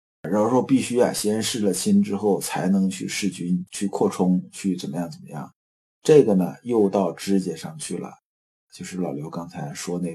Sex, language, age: male, Chinese, 50-69